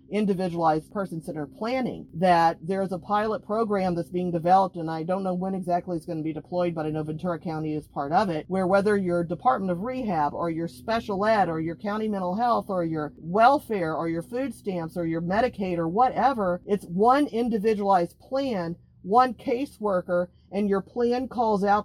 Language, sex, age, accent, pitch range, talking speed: English, female, 50-69, American, 170-210 Hz, 190 wpm